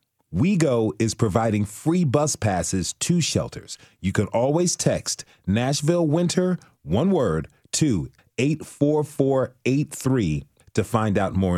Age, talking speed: 40-59, 115 wpm